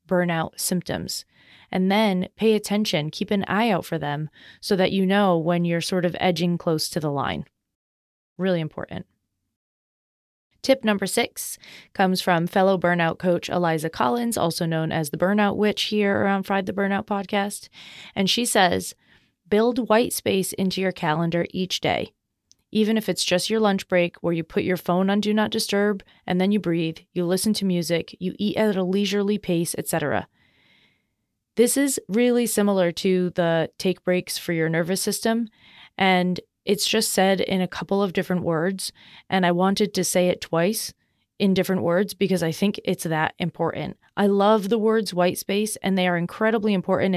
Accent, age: American, 30-49